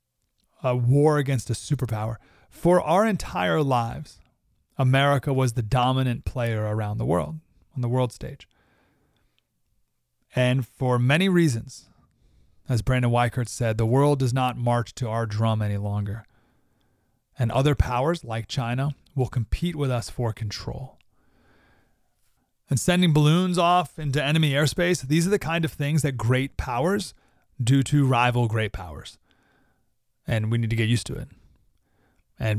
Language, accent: English, American